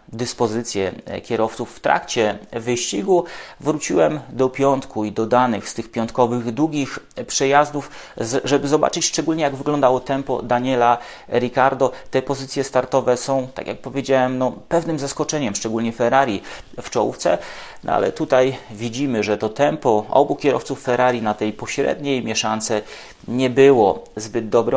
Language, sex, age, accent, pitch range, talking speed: English, male, 30-49, Polish, 115-135 Hz, 130 wpm